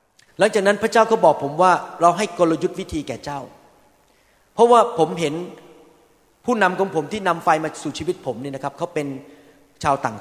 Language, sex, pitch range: Thai, male, 150-185 Hz